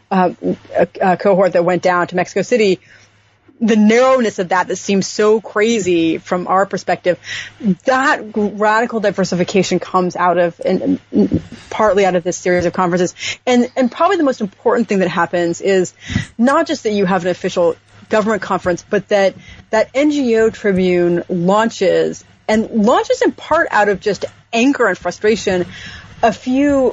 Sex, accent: female, American